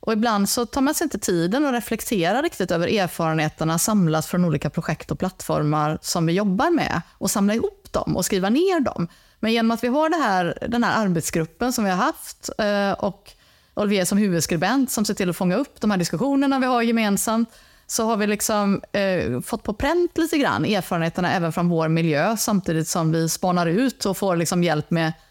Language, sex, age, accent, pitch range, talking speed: Swedish, female, 30-49, native, 175-230 Hz, 200 wpm